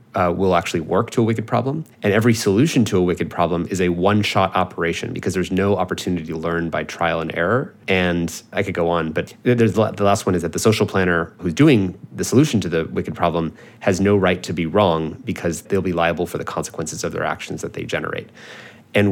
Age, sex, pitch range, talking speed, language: 30-49, male, 85-105 Hz, 225 wpm, English